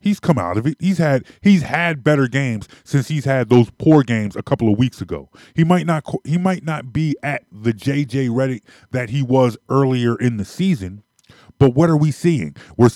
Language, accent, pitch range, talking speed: English, American, 120-155 Hz, 215 wpm